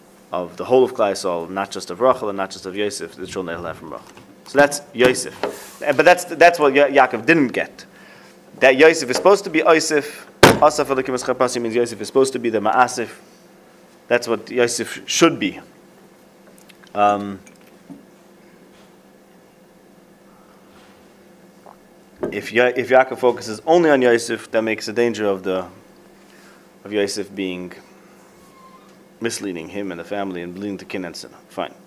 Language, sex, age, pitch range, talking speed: English, male, 30-49, 105-160 Hz, 150 wpm